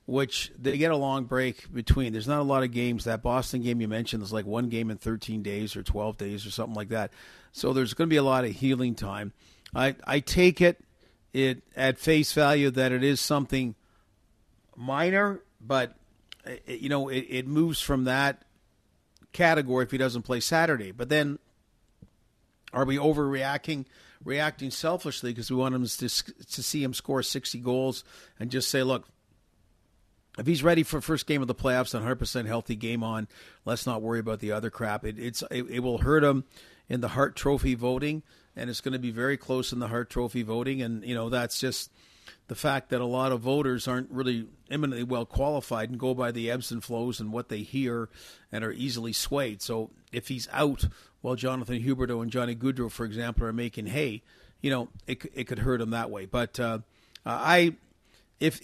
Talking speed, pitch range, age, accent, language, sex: 205 wpm, 115-135 Hz, 50-69, American, English, male